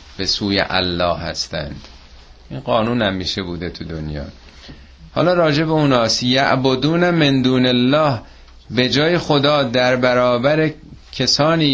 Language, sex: Persian, male